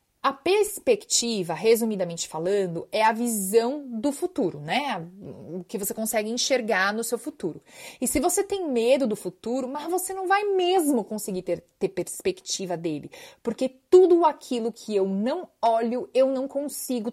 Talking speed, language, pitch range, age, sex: 160 wpm, Portuguese, 200-285 Hz, 30-49, female